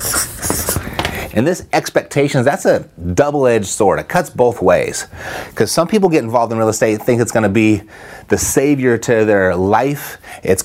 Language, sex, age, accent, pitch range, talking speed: English, male, 30-49, American, 110-145 Hz, 170 wpm